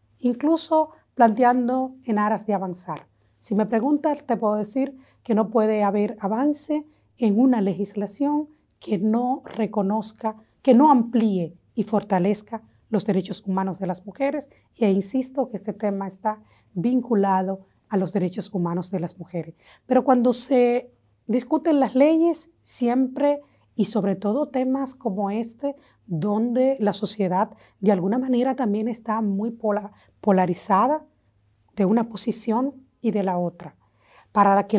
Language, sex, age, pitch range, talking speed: Spanish, female, 40-59, 195-245 Hz, 140 wpm